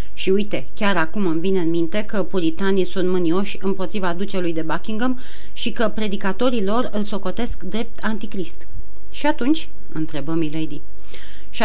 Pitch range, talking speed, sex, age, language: 175-210 Hz, 150 wpm, female, 30-49, Romanian